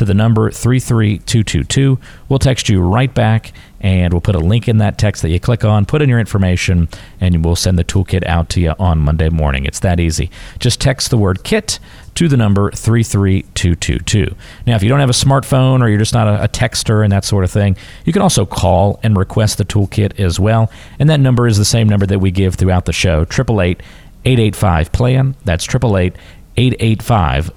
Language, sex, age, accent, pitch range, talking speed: English, male, 40-59, American, 90-125 Hz, 200 wpm